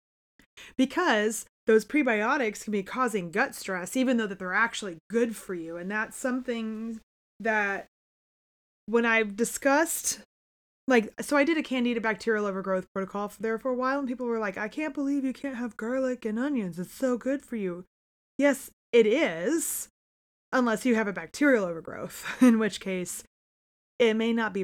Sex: female